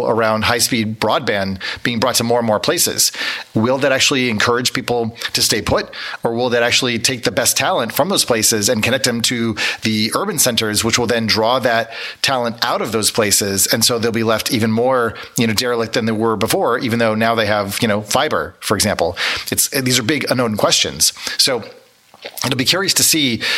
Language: English